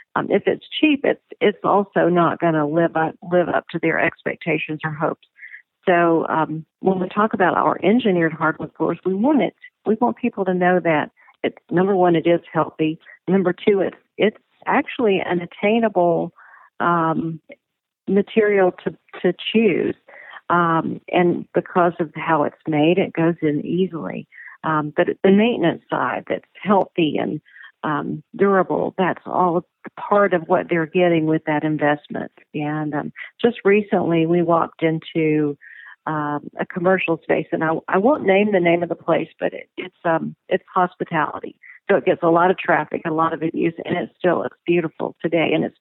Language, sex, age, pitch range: English, female, 50-69, 160-195 Hz